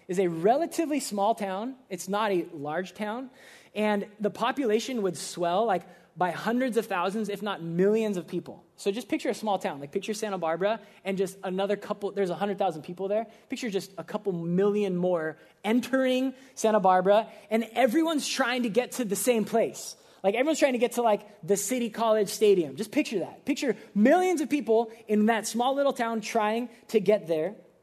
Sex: male